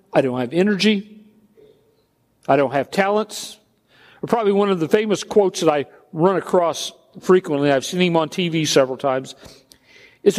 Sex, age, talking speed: male, 50-69, 160 wpm